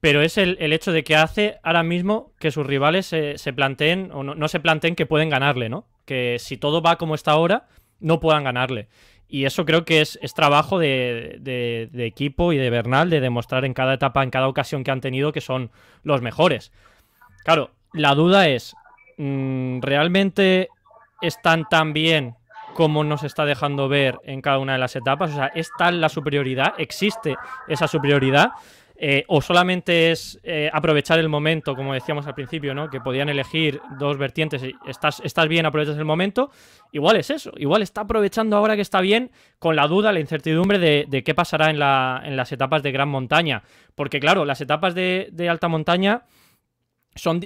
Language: Spanish